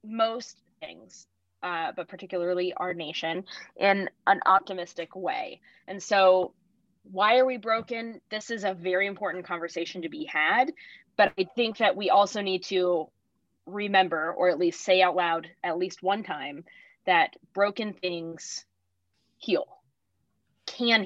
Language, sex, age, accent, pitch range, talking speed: English, female, 20-39, American, 175-220 Hz, 140 wpm